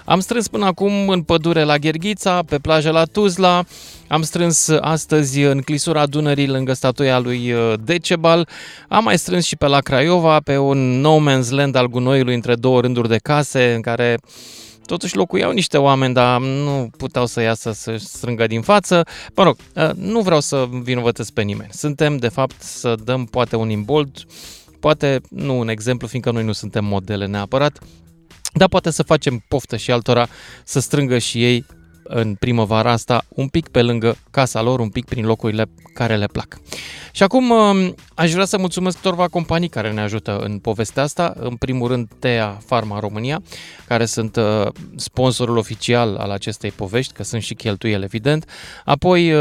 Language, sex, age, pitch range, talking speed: Romanian, male, 20-39, 115-155 Hz, 170 wpm